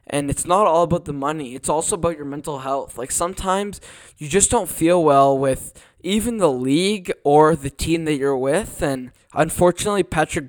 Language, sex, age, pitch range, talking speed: English, male, 10-29, 140-170 Hz, 190 wpm